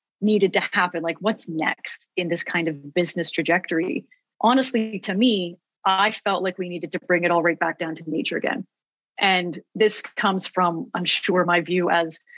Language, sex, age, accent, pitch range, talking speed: English, female, 30-49, American, 175-235 Hz, 190 wpm